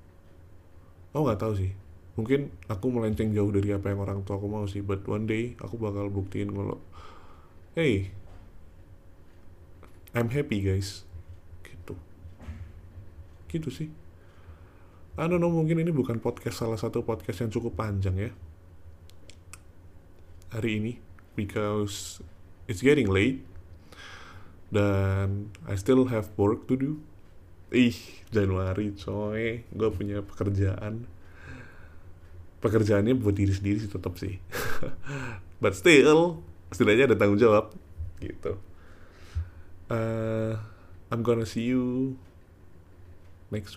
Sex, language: male, Indonesian